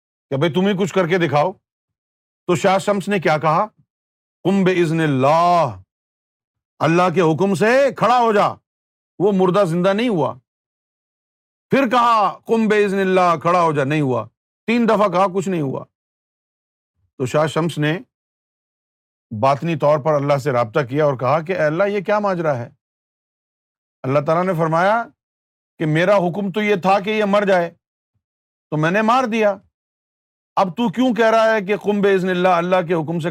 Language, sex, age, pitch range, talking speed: Urdu, male, 50-69, 150-205 Hz, 170 wpm